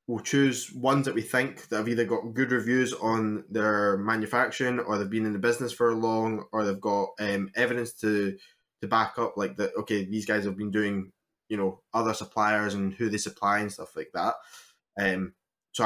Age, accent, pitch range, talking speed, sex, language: 10-29, British, 100-110 Hz, 205 wpm, male, English